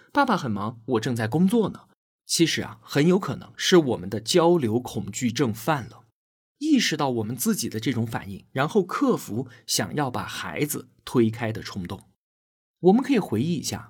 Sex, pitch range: male, 115-185 Hz